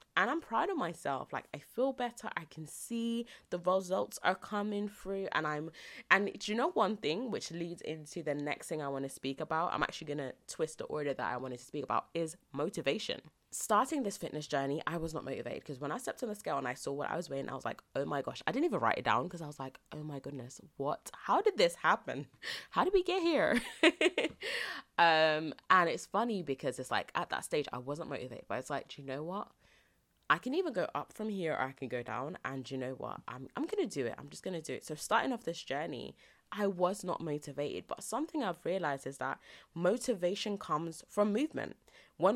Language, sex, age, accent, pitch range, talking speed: English, female, 20-39, British, 150-215 Hz, 235 wpm